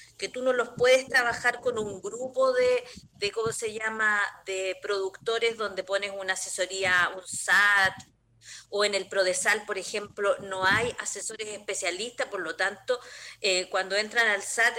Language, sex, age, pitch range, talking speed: Spanish, female, 40-59, 190-230 Hz, 160 wpm